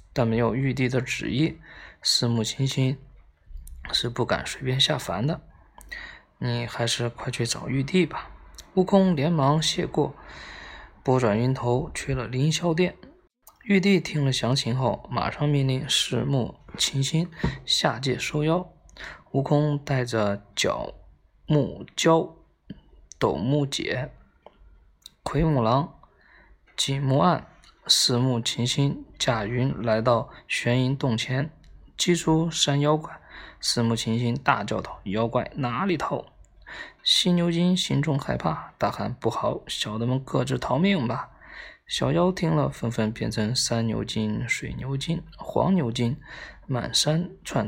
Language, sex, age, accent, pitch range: Chinese, male, 20-39, native, 115-155 Hz